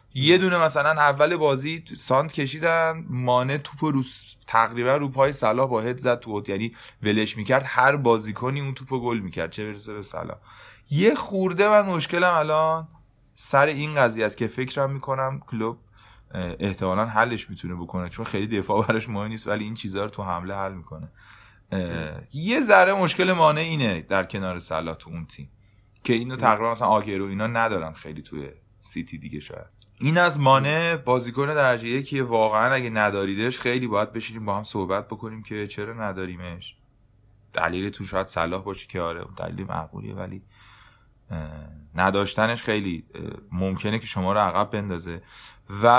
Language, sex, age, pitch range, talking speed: Persian, male, 30-49, 100-130 Hz, 165 wpm